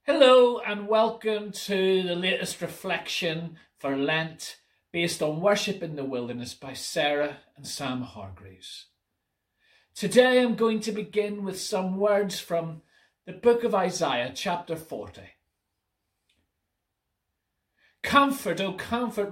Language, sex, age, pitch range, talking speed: English, male, 40-59, 130-210 Hz, 120 wpm